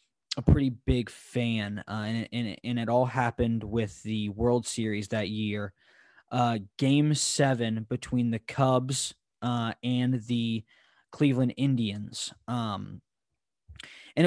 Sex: male